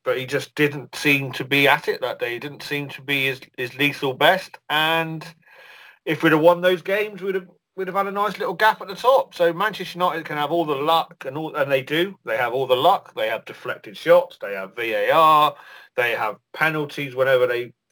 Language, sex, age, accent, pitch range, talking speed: English, male, 40-59, British, 140-175 Hz, 230 wpm